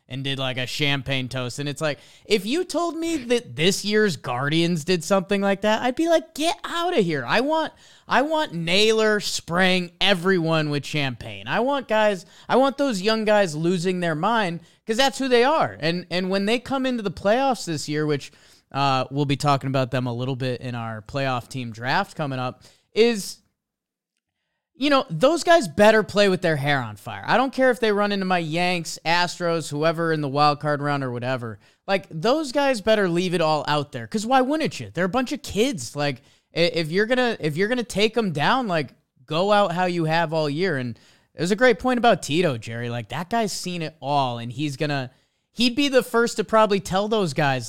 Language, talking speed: English, 220 wpm